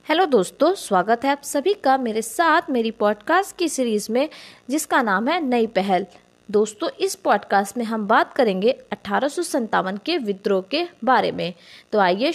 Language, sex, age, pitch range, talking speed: Hindi, female, 20-39, 205-305 Hz, 165 wpm